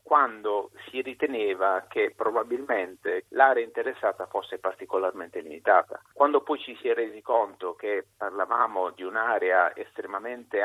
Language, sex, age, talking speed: Italian, male, 50-69, 125 wpm